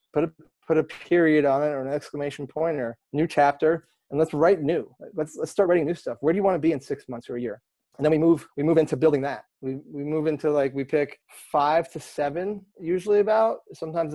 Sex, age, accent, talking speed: male, 30-49, American, 245 wpm